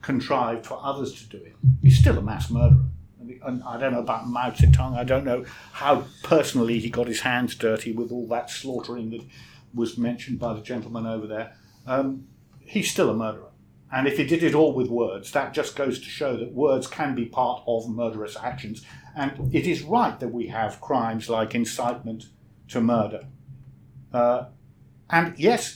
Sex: male